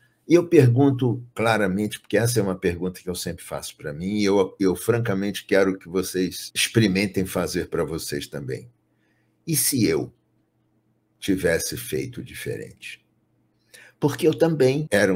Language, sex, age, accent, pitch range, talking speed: Portuguese, male, 60-79, Brazilian, 95-125 Hz, 140 wpm